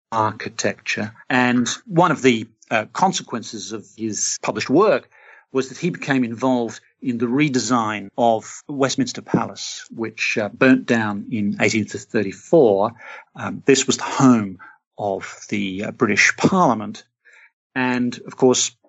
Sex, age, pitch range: male, 50-69, 105-130 Hz